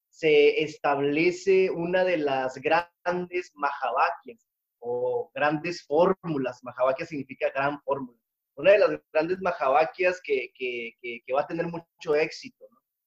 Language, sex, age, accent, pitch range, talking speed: Spanish, male, 30-49, Mexican, 140-180 Hz, 130 wpm